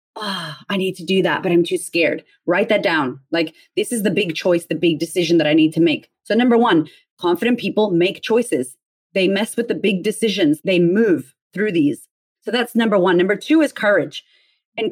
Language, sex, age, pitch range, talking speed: English, female, 30-49, 180-235 Hz, 215 wpm